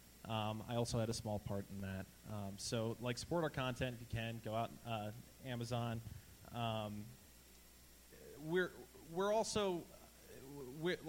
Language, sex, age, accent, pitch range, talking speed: English, male, 20-39, American, 110-135 Hz, 145 wpm